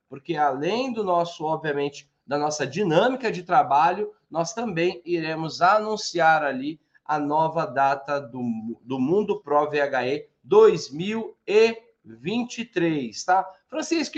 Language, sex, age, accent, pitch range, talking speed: Portuguese, male, 20-39, Brazilian, 160-225 Hz, 110 wpm